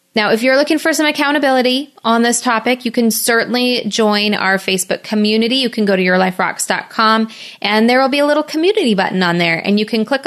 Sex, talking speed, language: female, 210 wpm, English